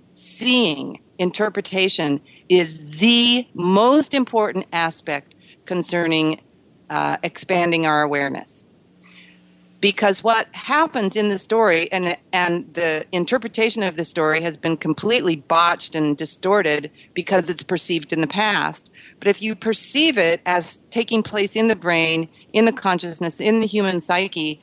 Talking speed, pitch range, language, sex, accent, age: 135 wpm, 150-200 Hz, English, female, American, 50-69